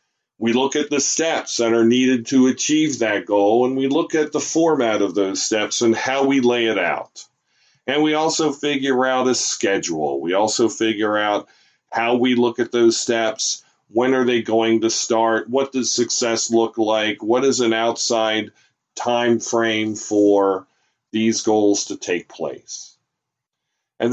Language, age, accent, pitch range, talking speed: English, 40-59, American, 115-140 Hz, 170 wpm